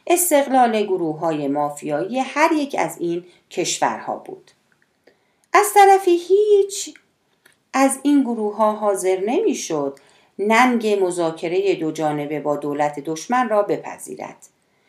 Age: 40-59